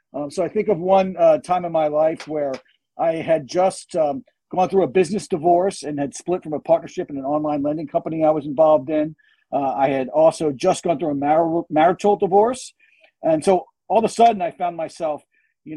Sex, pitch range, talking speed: male, 145-195 Hz, 215 wpm